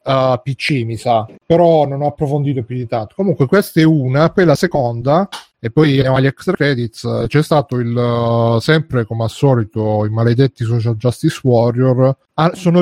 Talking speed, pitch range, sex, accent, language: 180 wpm, 130-160 Hz, male, native, Italian